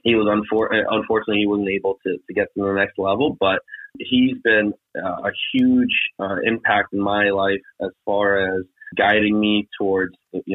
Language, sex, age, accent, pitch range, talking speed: English, male, 30-49, American, 100-135 Hz, 180 wpm